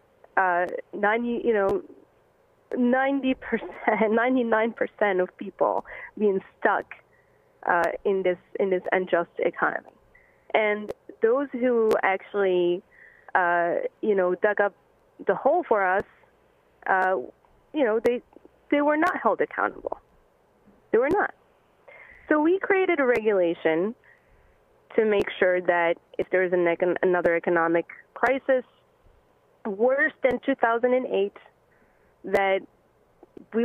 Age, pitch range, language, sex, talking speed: 30-49, 200-275 Hz, English, female, 115 wpm